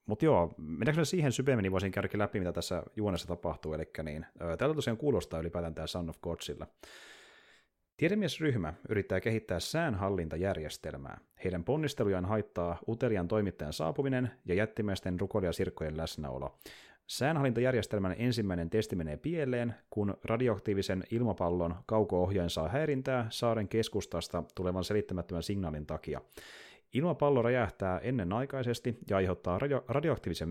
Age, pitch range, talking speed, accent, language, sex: 30-49, 85-115 Hz, 120 wpm, native, Finnish, male